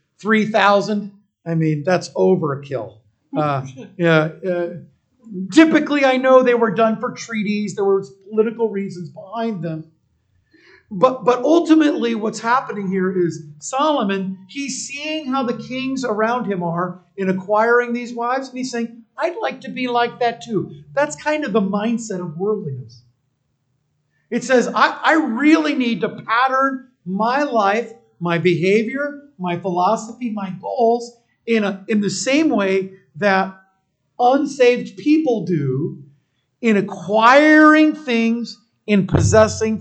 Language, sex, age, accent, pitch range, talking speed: English, male, 50-69, American, 175-240 Hz, 135 wpm